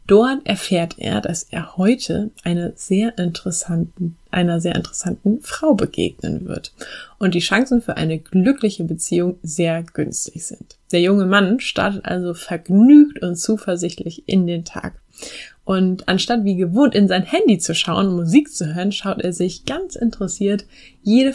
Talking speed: 155 wpm